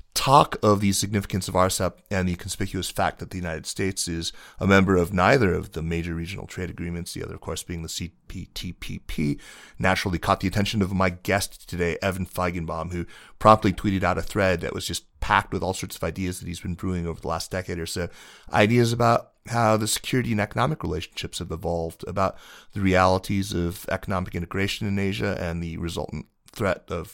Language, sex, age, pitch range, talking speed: English, male, 30-49, 85-105 Hz, 200 wpm